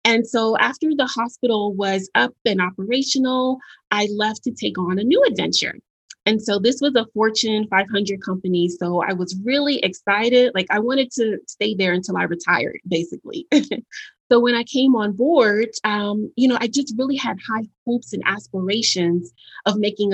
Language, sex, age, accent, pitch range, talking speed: English, female, 30-49, American, 190-240 Hz, 175 wpm